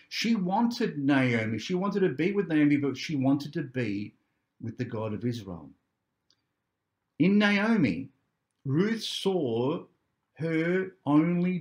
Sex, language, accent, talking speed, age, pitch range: male, English, Australian, 130 wpm, 50-69, 125-175 Hz